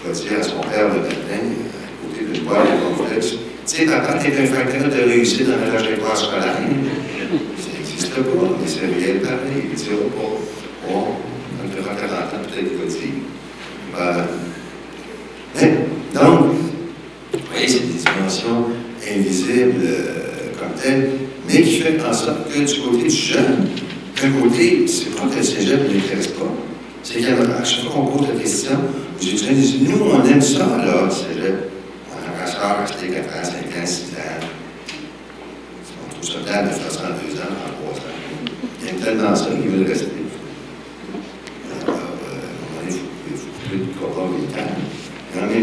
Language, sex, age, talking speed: French, male, 60-79, 190 wpm